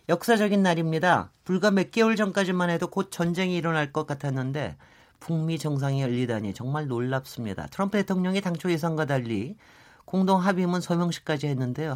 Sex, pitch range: male, 145-200 Hz